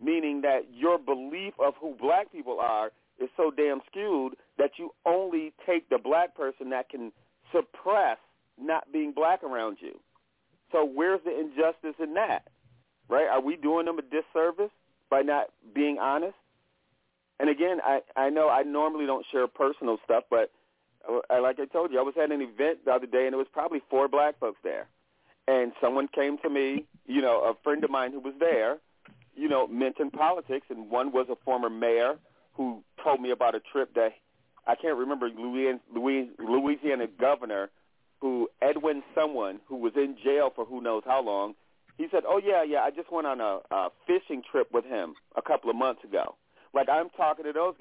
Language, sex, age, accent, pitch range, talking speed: English, male, 40-59, American, 130-170 Hz, 190 wpm